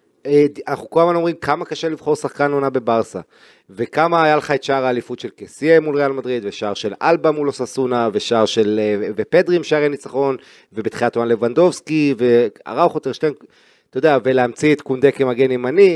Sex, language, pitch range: male, Hebrew, 125-175 Hz